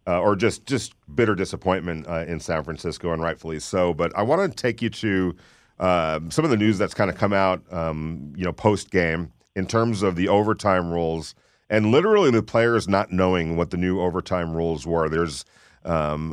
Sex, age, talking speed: male, 40-59, 200 wpm